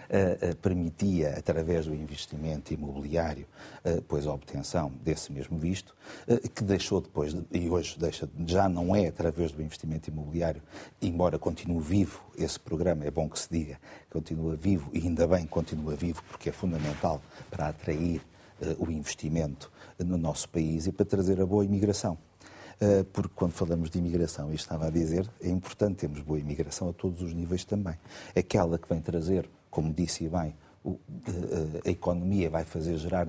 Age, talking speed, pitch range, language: 50-69, 160 wpm, 80-100 Hz, Portuguese